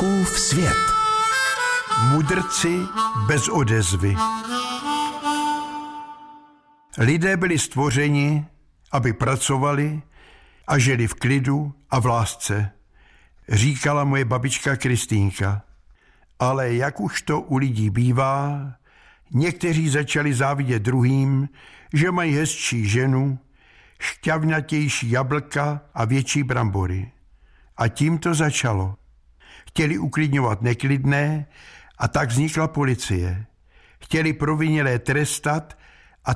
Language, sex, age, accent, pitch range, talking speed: Czech, male, 60-79, native, 125-160 Hz, 90 wpm